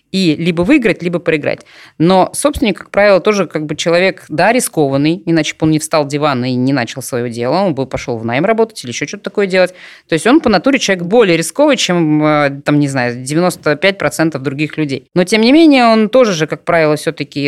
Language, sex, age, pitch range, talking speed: Russian, female, 20-39, 155-210 Hz, 215 wpm